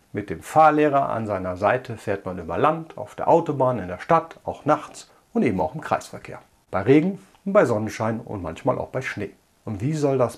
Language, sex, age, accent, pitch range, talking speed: German, male, 50-69, German, 110-140 Hz, 215 wpm